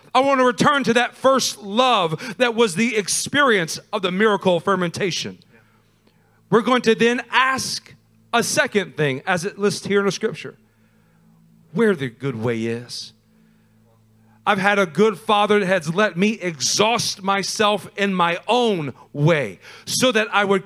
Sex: male